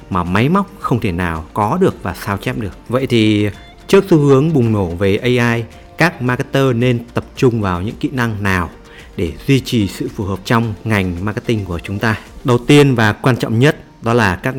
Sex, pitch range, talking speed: male, 100-140 Hz, 215 wpm